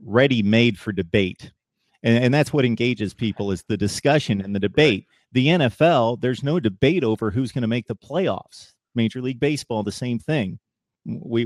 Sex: male